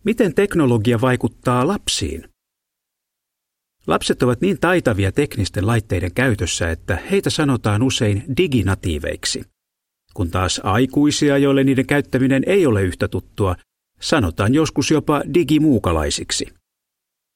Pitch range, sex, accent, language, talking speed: 100-140 Hz, male, native, Finnish, 105 wpm